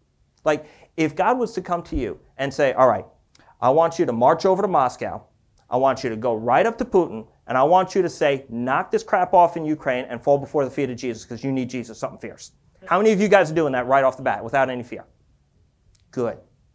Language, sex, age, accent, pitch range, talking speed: English, male, 30-49, American, 130-180 Hz, 250 wpm